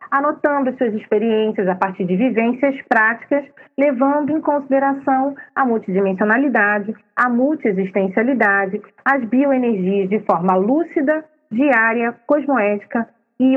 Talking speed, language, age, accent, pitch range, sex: 100 wpm, Portuguese, 30-49, Brazilian, 205-270 Hz, female